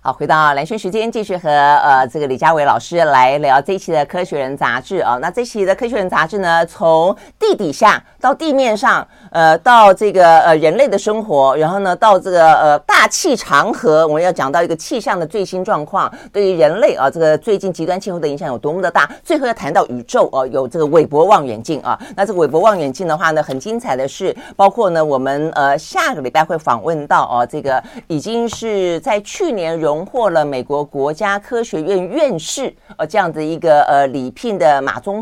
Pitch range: 145-210 Hz